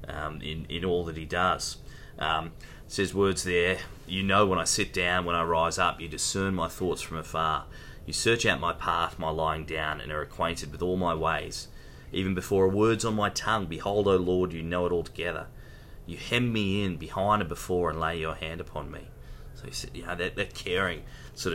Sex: male